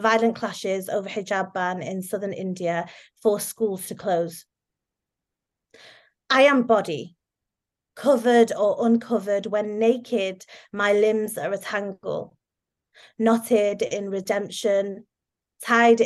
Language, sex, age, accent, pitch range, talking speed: English, female, 20-39, British, 200-230 Hz, 110 wpm